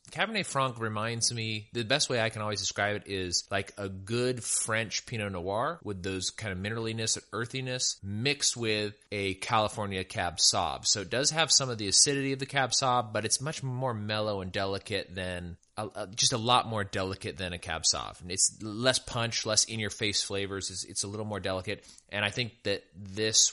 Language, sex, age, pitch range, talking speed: English, male, 20-39, 95-120 Hz, 205 wpm